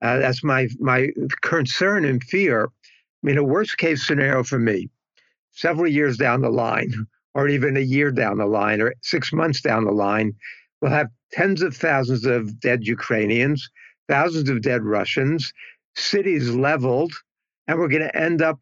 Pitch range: 125-150 Hz